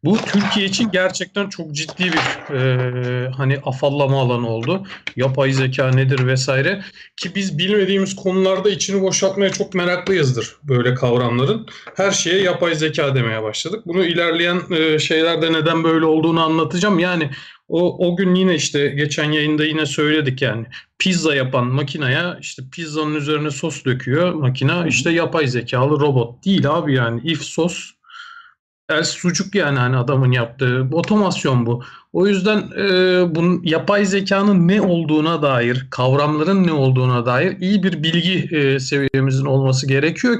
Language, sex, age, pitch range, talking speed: Turkish, male, 40-59, 135-190 Hz, 145 wpm